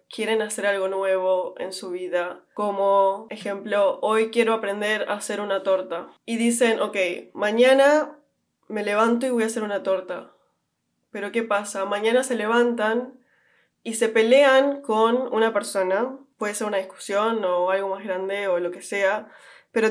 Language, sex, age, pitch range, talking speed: Spanish, female, 20-39, 195-235 Hz, 160 wpm